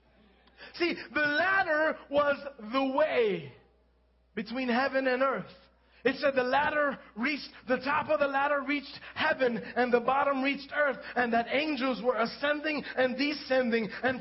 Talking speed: 150 wpm